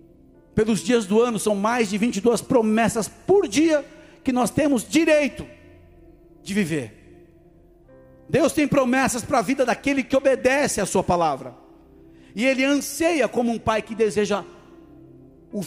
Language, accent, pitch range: Portuguese, Brazilian, 195-285 Hz